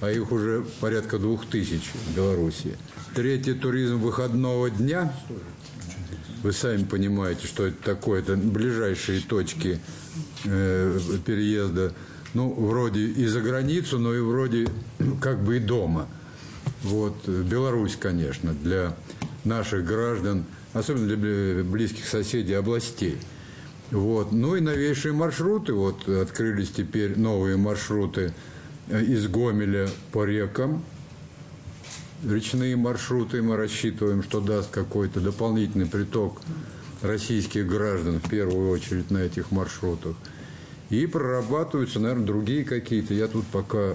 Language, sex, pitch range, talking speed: Russian, male, 100-125 Hz, 115 wpm